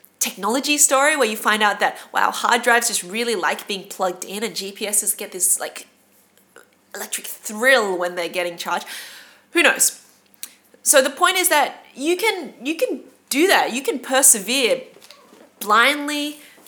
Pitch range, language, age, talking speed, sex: 200-275 Hz, English, 20-39, 160 wpm, female